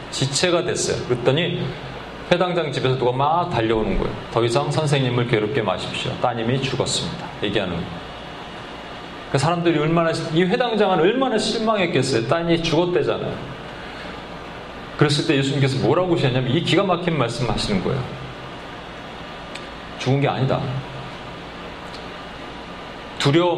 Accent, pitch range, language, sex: native, 125-170 Hz, Korean, male